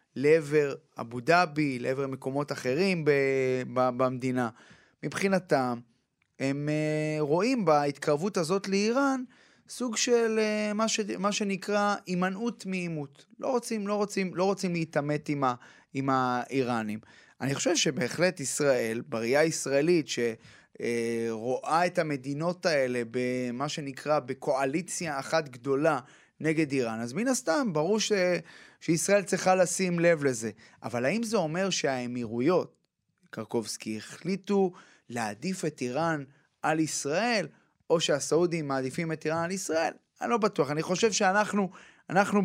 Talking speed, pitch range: 125 wpm, 135-195 Hz